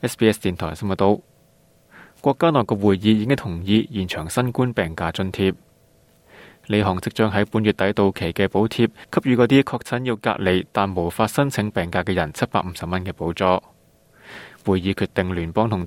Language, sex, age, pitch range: Chinese, male, 20-39, 95-115 Hz